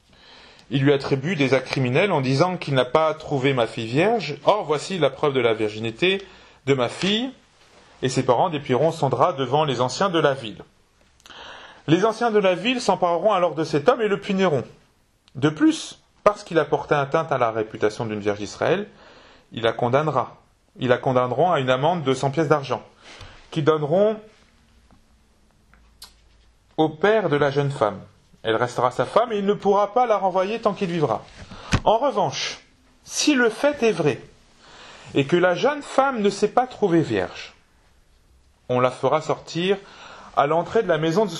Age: 30-49